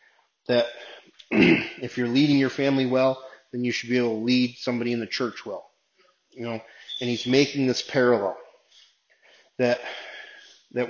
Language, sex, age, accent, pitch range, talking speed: English, male, 30-49, American, 120-135 Hz, 155 wpm